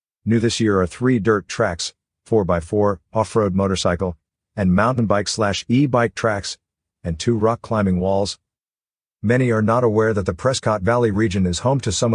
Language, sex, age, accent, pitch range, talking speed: English, male, 50-69, American, 95-120 Hz, 170 wpm